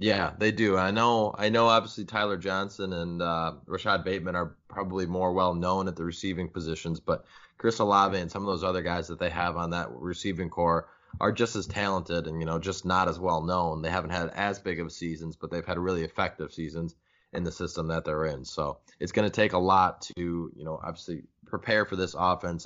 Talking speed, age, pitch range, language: 220 wpm, 20-39, 85-95 Hz, English